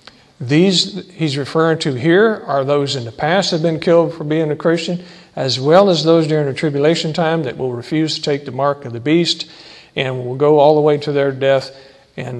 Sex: male